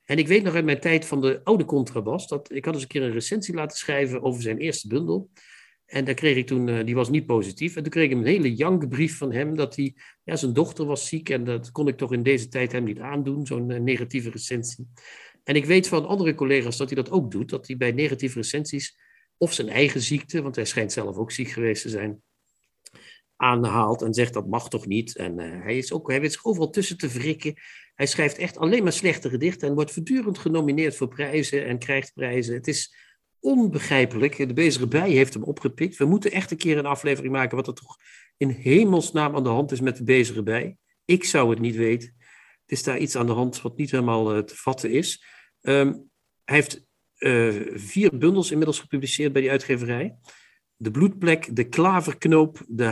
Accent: Dutch